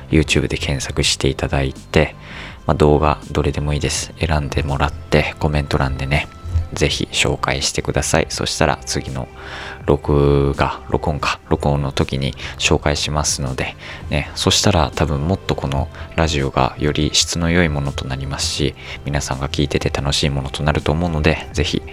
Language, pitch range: Japanese, 70-85 Hz